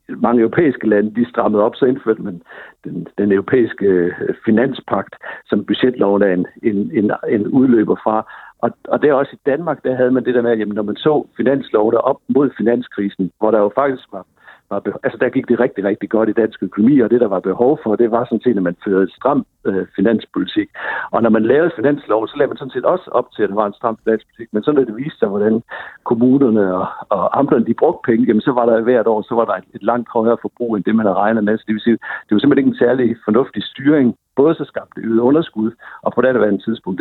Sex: male